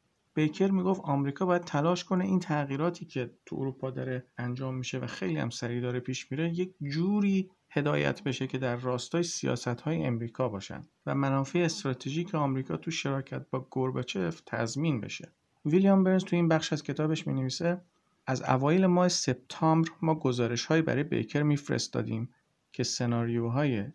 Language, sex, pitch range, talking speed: Persian, male, 120-160 Hz, 155 wpm